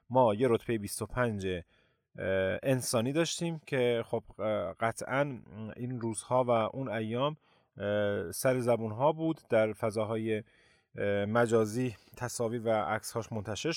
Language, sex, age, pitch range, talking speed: Persian, male, 30-49, 110-145 Hz, 105 wpm